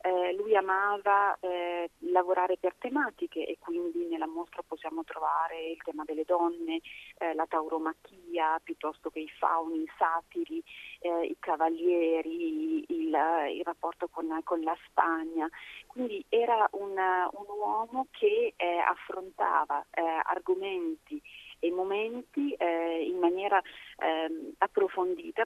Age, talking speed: 30-49, 125 wpm